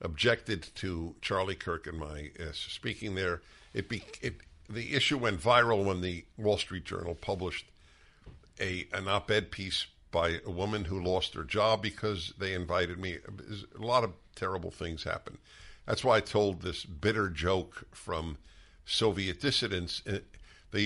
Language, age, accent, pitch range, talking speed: English, 60-79, American, 80-105 Hz, 155 wpm